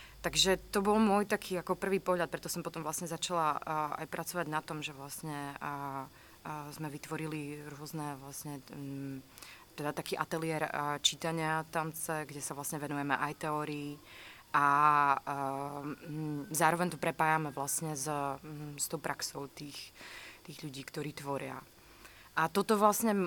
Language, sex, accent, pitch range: Czech, female, native, 145-165 Hz